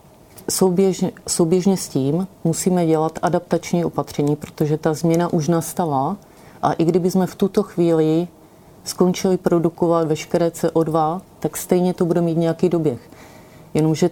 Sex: female